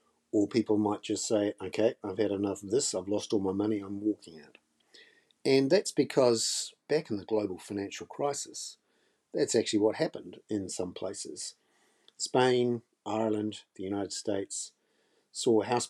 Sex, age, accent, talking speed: male, 50-69, Australian, 160 wpm